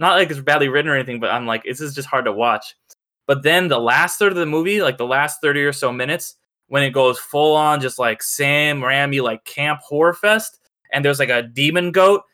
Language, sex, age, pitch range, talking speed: English, male, 10-29, 125-155 Hz, 245 wpm